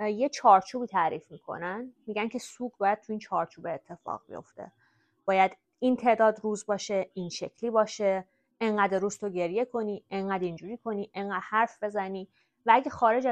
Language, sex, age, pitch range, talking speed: Persian, female, 20-39, 180-220 Hz, 160 wpm